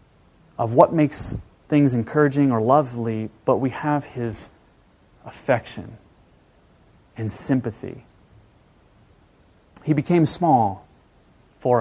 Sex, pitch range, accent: male, 110-155 Hz, American